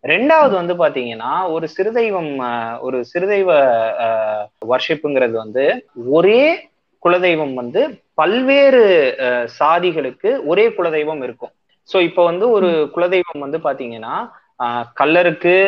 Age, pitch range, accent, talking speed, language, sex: 20-39, 150-225 Hz, native, 105 wpm, Tamil, male